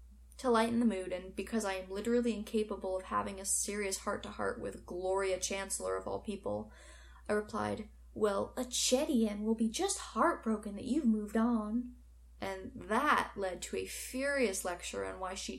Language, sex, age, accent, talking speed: English, female, 10-29, American, 170 wpm